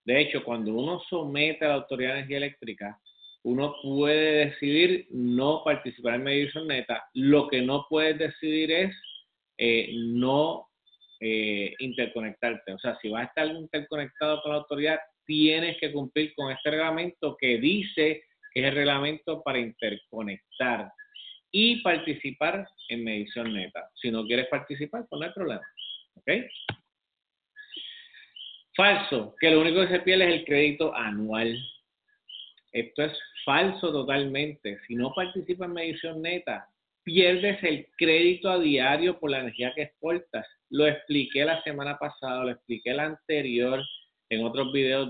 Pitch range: 120-160 Hz